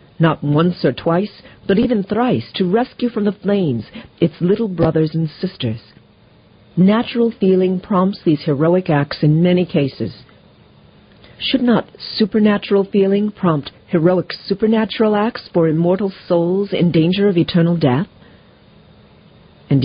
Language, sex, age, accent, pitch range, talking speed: English, female, 50-69, American, 150-205 Hz, 130 wpm